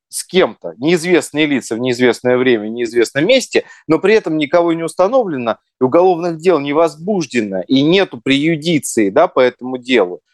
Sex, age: male, 30-49